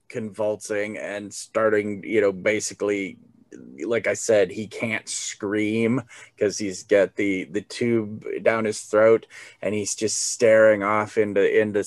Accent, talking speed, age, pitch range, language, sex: American, 140 wpm, 30-49, 110-160 Hz, English, male